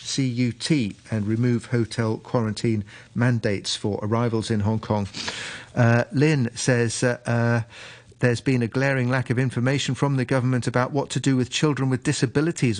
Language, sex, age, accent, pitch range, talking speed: English, male, 40-59, British, 115-130 Hz, 150 wpm